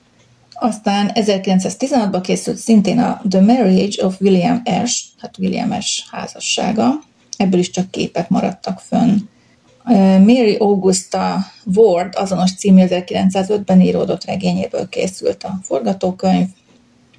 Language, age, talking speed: Hungarian, 30-49, 105 wpm